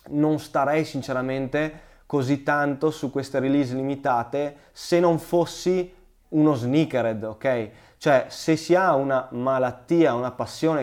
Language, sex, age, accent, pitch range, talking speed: Italian, male, 20-39, native, 125-160 Hz, 125 wpm